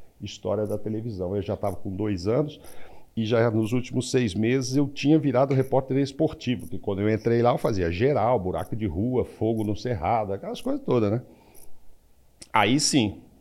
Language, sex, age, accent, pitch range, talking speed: Portuguese, male, 50-69, Brazilian, 95-135 Hz, 180 wpm